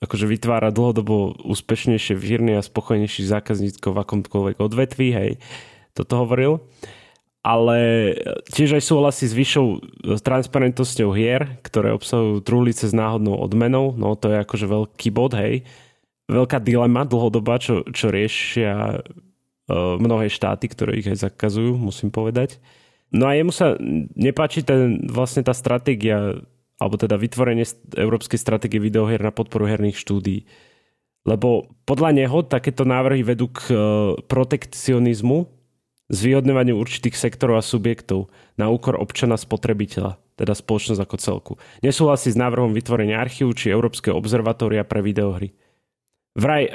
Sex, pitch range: male, 105-125 Hz